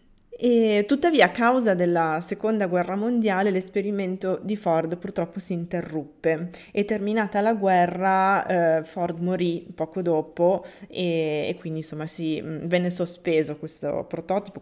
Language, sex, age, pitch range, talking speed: Italian, female, 20-39, 160-195 Hz, 135 wpm